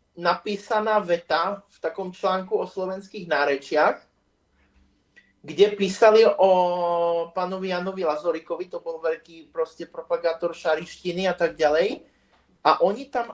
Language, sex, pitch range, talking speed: Slovak, male, 170-200 Hz, 115 wpm